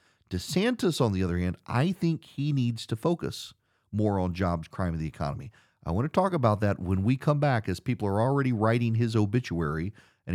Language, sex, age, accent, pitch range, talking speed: English, male, 40-59, American, 90-120 Hz, 210 wpm